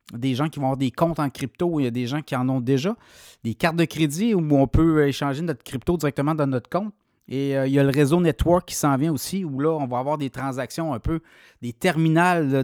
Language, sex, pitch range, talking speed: French, male, 130-160 Hz, 265 wpm